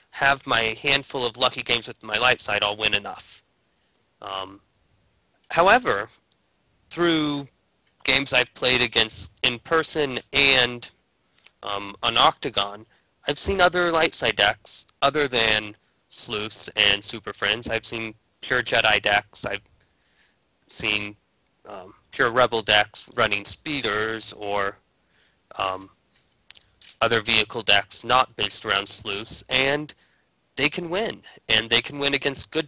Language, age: English, 20-39